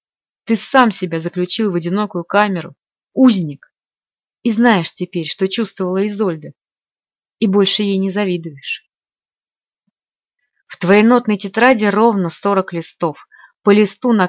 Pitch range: 180-220 Hz